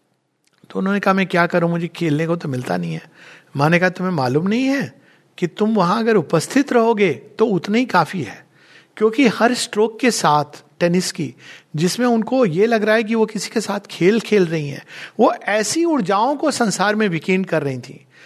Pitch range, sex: 175-230 Hz, male